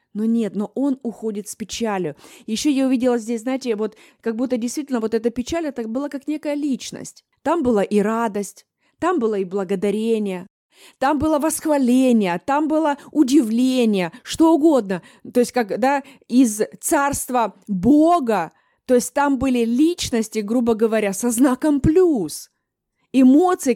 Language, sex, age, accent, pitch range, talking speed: Russian, female, 20-39, native, 230-280 Hz, 145 wpm